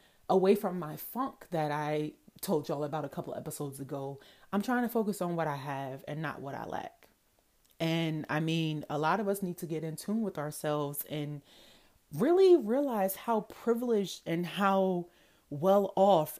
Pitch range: 155-195 Hz